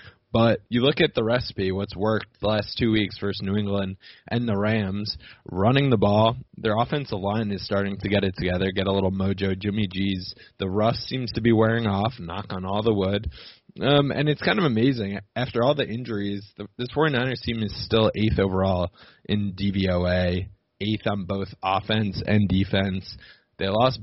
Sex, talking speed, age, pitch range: male, 190 wpm, 20-39, 95-115 Hz